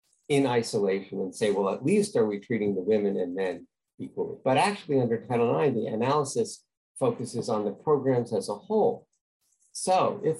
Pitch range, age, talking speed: 110-175 Hz, 50-69, 180 wpm